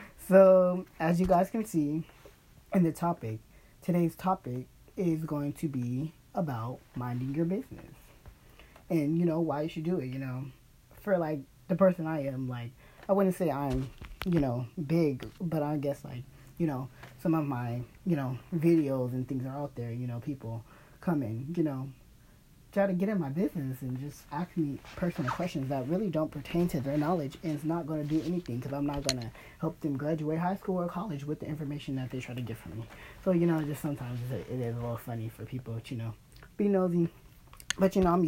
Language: English